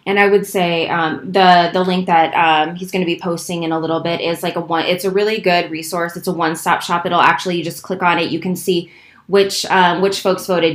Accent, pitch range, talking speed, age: American, 165-185 Hz, 270 wpm, 20-39